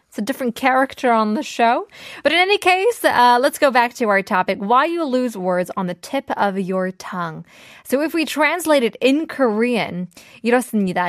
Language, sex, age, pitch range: Korean, female, 20-39, 195-270 Hz